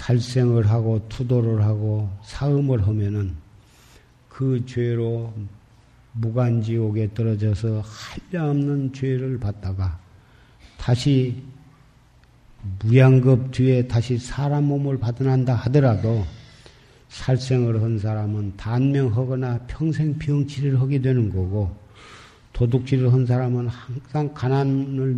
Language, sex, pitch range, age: Korean, male, 110-135 Hz, 50-69